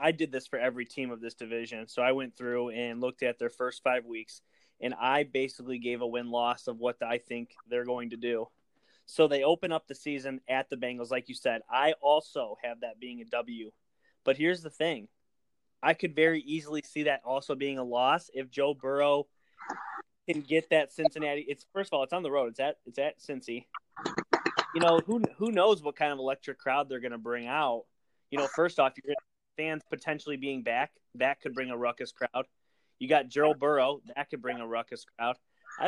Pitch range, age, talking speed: 125-160 Hz, 20-39, 220 wpm